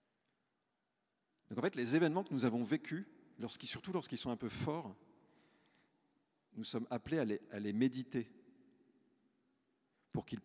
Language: French